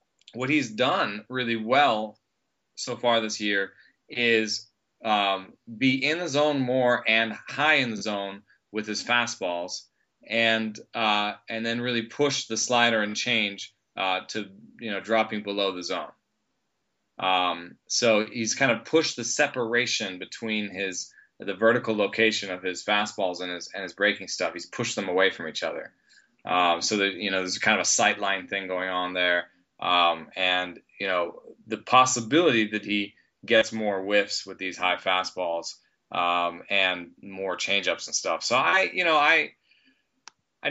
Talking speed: 165 wpm